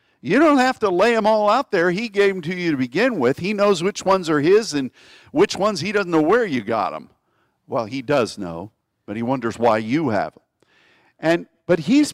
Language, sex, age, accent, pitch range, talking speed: English, male, 50-69, American, 125-185 Hz, 230 wpm